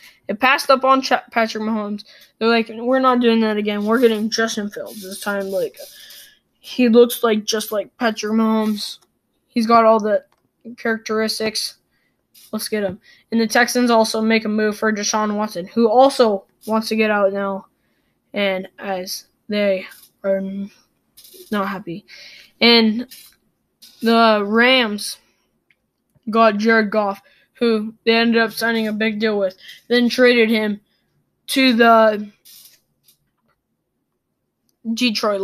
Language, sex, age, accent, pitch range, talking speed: English, female, 10-29, American, 205-230 Hz, 135 wpm